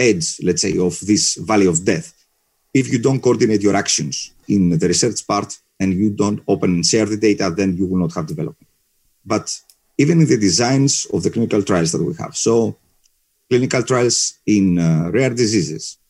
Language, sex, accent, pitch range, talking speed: English, male, Spanish, 90-125 Hz, 190 wpm